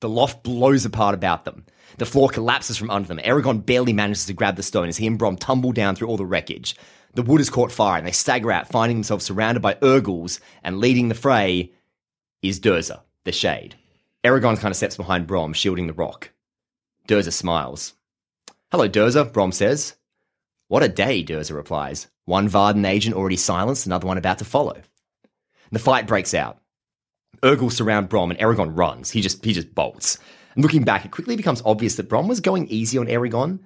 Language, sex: English, male